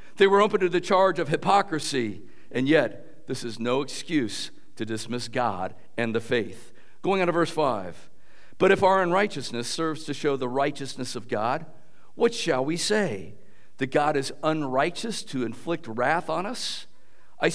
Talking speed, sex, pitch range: 170 wpm, male, 135-200 Hz